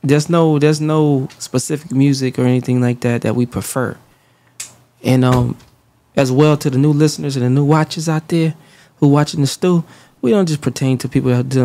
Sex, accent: male, American